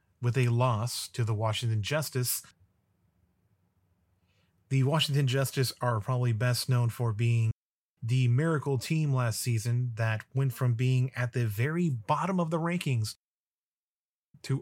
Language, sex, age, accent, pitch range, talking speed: English, male, 30-49, American, 115-140 Hz, 135 wpm